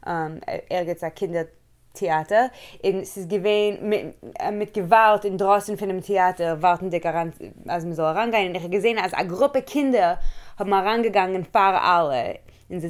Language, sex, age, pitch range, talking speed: English, female, 20-39, 170-220 Hz, 195 wpm